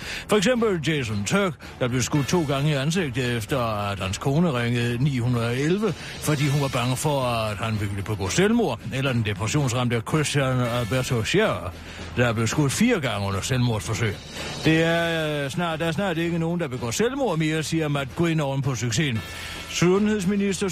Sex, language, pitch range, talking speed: male, Danish, 115-175 Hz, 175 wpm